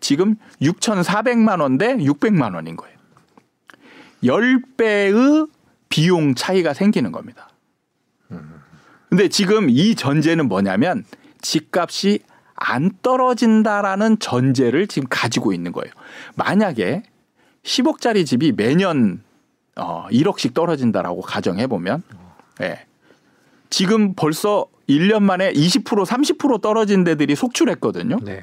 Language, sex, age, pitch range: Korean, male, 40-59, 175-255 Hz